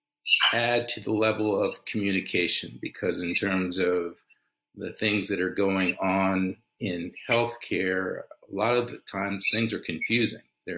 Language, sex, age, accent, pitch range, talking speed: English, male, 50-69, American, 95-110 Hz, 150 wpm